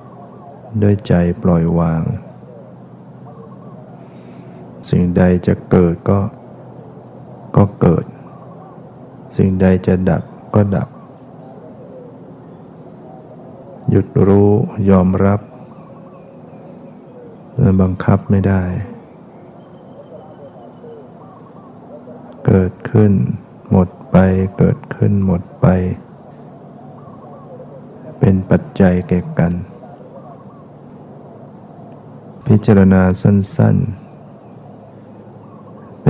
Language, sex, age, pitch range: Thai, male, 60-79, 90-105 Hz